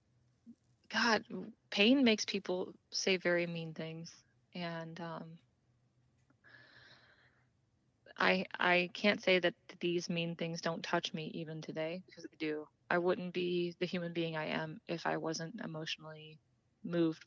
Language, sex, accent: English, female, American